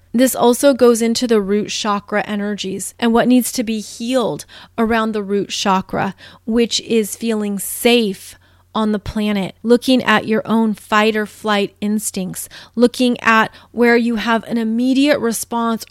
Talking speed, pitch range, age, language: 155 wpm, 210-255 Hz, 30-49, English